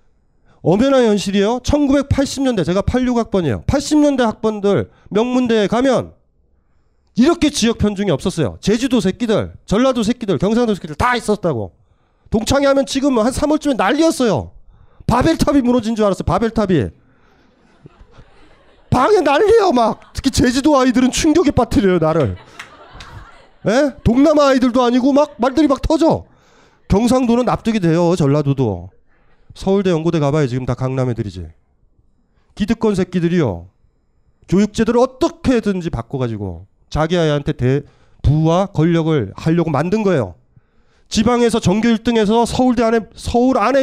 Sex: male